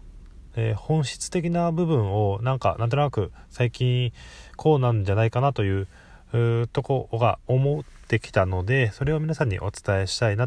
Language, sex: Japanese, male